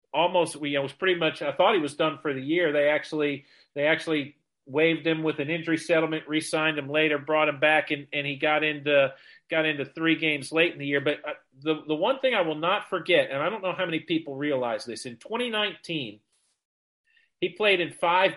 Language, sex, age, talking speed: English, male, 40-59, 220 wpm